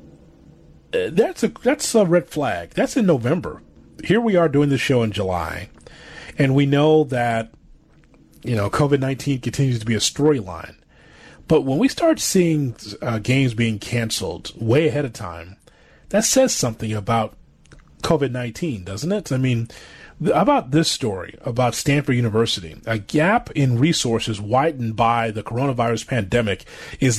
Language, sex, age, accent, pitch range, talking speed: English, male, 30-49, American, 115-155 Hz, 150 wpm